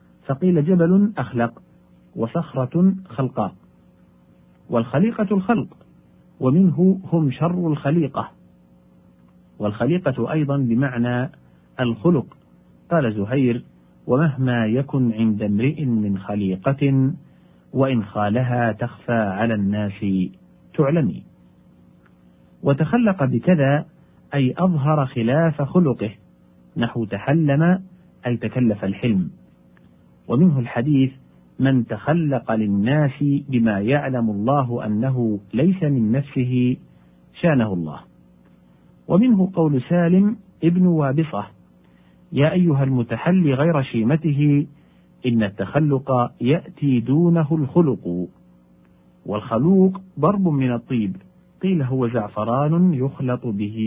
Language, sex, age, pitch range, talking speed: Arabic, male, 40-59, 100-150 Hz, 85 wpm